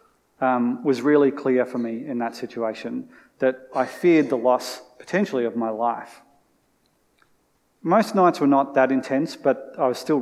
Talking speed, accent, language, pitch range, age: 165 wpm, Australian, English, 125-150 Hz, 30-49